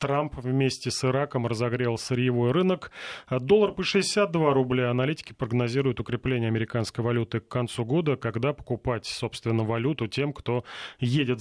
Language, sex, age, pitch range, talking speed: Russian, male, 30-49, 115-145 Hz, 135 wpm